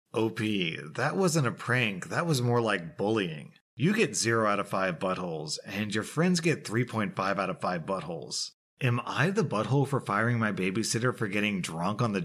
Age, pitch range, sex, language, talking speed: 30-49, 100-130 Hz, male, English, 190 wpm